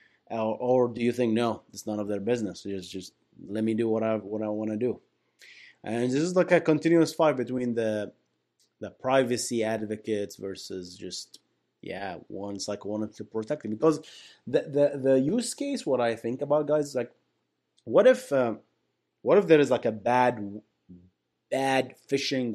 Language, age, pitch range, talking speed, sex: English, 30-49, 105-140 Hz, 185 wpm, male